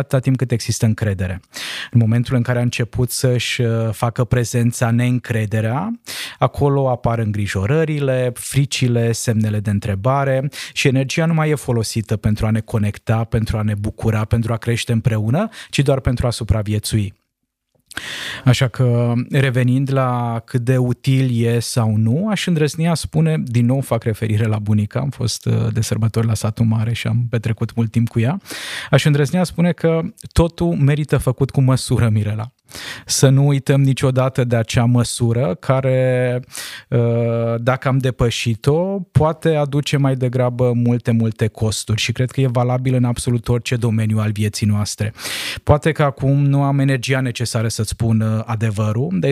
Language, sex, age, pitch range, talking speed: Romanian, male, 20-39, 115-135 Hz, 155 wpm